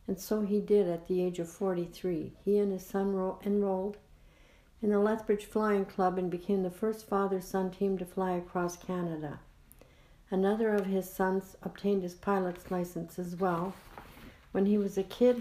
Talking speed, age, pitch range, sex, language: 170 wpm, 60-79, 180-205 Hz, female, English